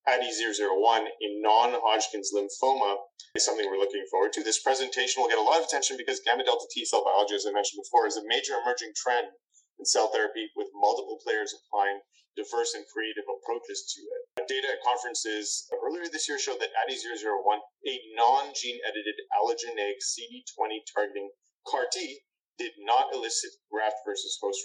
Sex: male